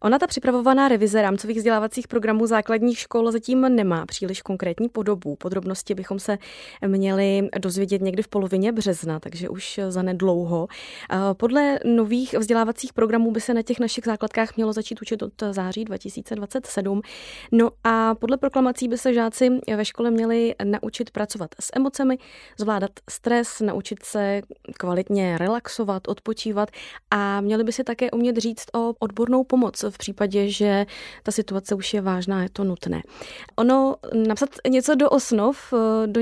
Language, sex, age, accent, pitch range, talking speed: Czech, female, 20-39, native, 190-230 Hz, 150 wpm